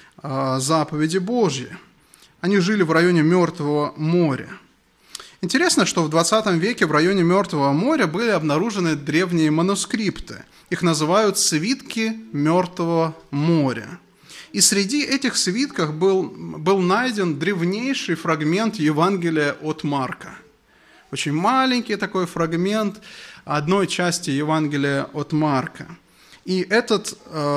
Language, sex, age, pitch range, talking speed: English, male, 20-39, 155-225 Hz, 105 wpm